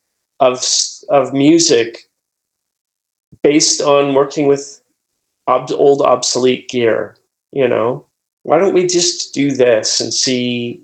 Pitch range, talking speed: 125-160 Hz, 115 wpm